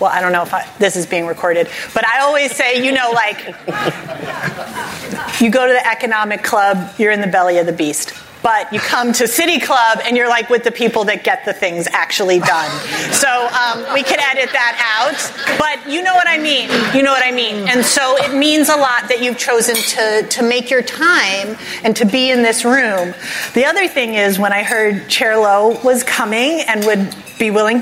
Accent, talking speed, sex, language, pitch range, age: American, 215 wpm, female, English, 205-250 Hz, 30-49